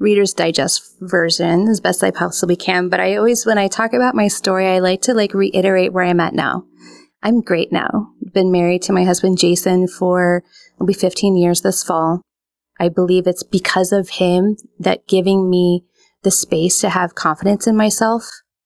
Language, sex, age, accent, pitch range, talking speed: English, female, 30-49, American, 175-215 Hz, 185 wpm